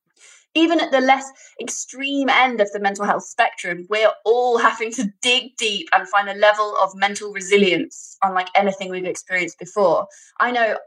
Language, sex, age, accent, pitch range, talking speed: English, female, 20-39, British, 200-265 Hz, 170 wpm